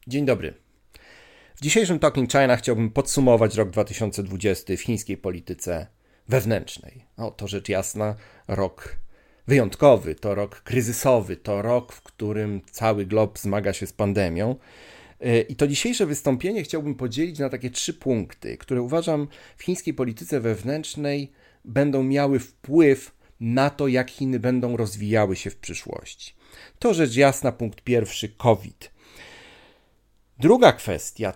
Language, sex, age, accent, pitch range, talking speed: Polish, male, 40-59, native, 110-140 Hz, 130 wpm